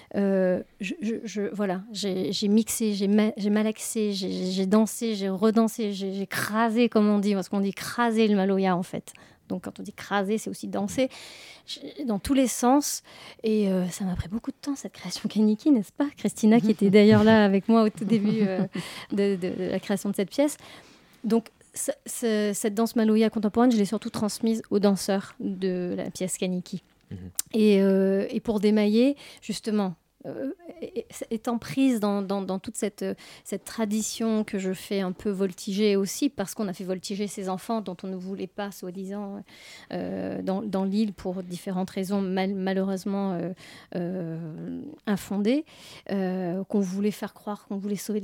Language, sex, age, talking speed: French, female, 30-49, 185 wpm